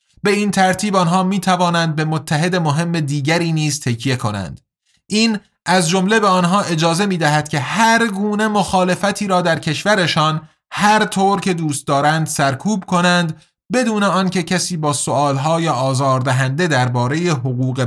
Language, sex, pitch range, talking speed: Persian, male, 135-185 Hz, 140 wpm